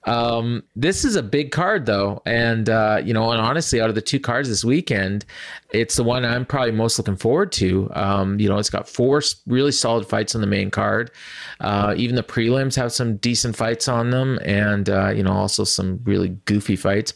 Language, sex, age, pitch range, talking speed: English, male, 30-49, 100-125 Hz, 215 wpm